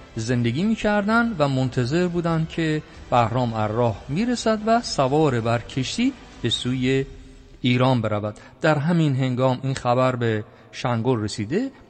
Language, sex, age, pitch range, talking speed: Persian, male, 50-69, 115-170 Hz, 140 wpm